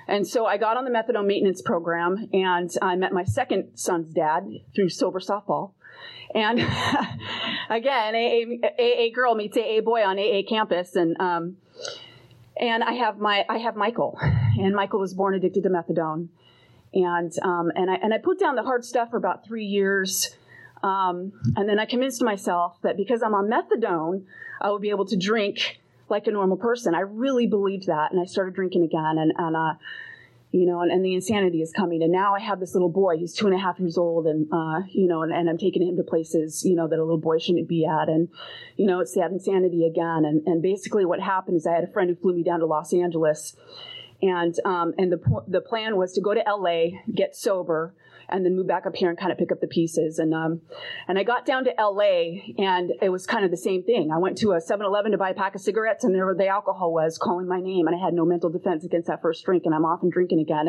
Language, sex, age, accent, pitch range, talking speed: English, female, 30-49, American, 170-210 Hz, 235 wpm